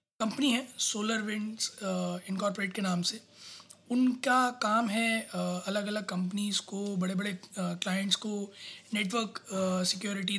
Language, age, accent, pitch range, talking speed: Hindi, 20-39, native, 190-230 Hz, 120 wpm